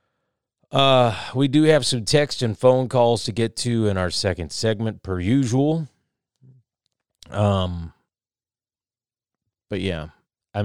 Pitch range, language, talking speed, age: 90-115 Hz, English, 125 wpm, 40-59